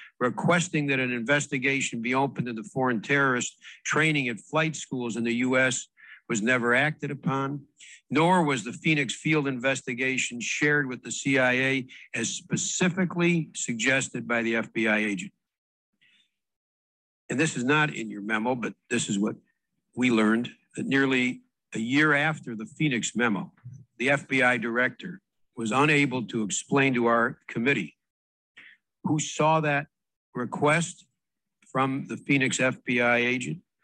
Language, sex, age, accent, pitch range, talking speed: English, male, 60-79, American, 120-145 Hz, 140 wpm